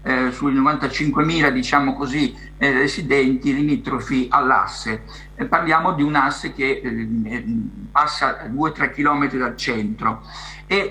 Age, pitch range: 50-69, 135-190 Hz